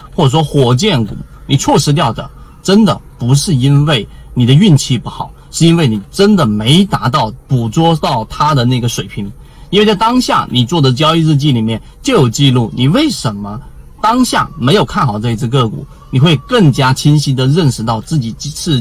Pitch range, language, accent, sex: 115-155 Hz, Chinese, native, male